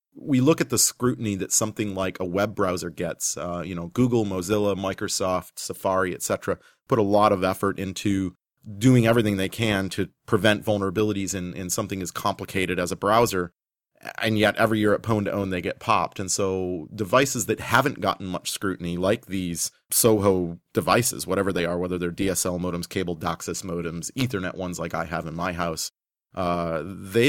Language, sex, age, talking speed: English, male, 30-49, 185 wpm